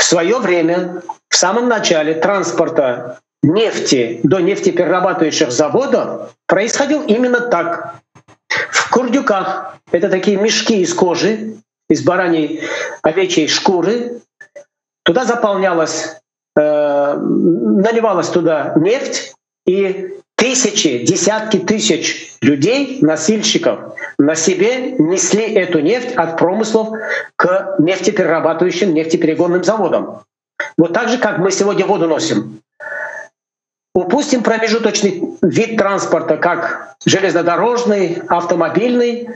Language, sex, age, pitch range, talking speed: Russian, male, 50-69, 170-235 Hz, 95 wpm